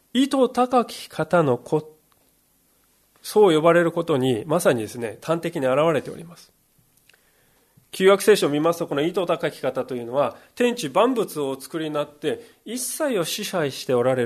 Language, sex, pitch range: Japanese, male, 145-225 Hz